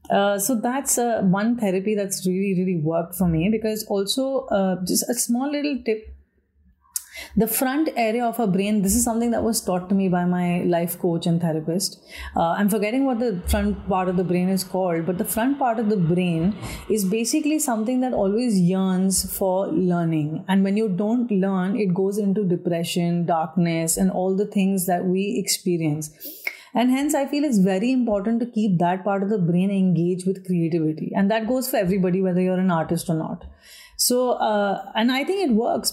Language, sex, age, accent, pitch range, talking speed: English, female, 30-49, Indian, 175-220 Hz, 200 wpm